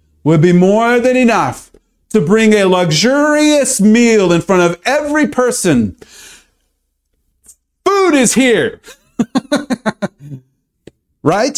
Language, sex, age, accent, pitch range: Japanese, male, 40-59, American, 155-245 Hz